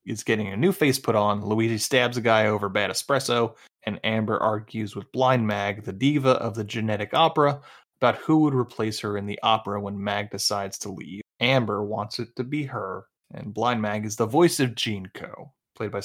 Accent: American